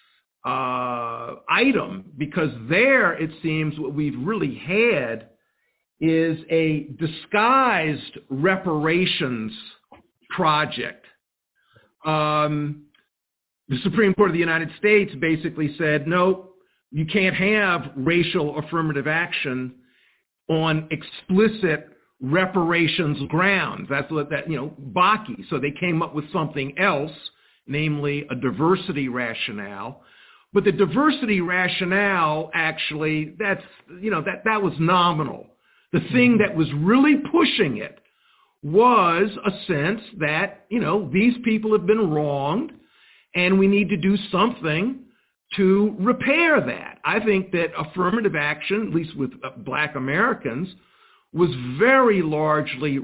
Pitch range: 150-195 Hz